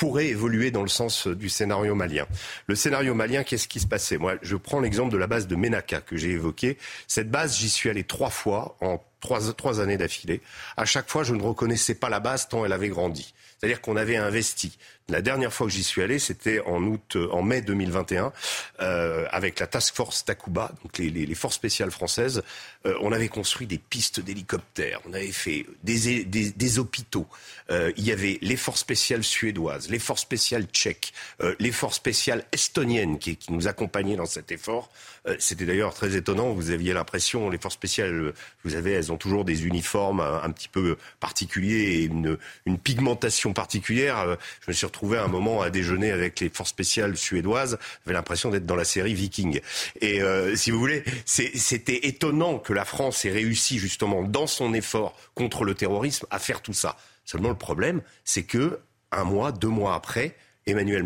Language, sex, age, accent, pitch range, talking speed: French, male, 40-59, French, 90-120 Hz, 200 wpm